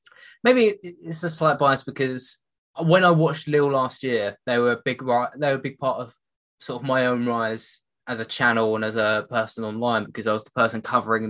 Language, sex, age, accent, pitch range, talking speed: English, male, 10-29, British, 125-170 Hz, 220 wpm